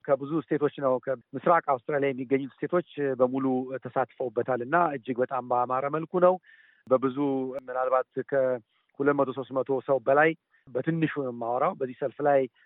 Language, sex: Amharic, male